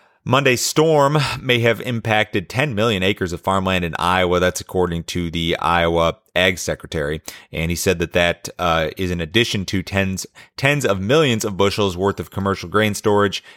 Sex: male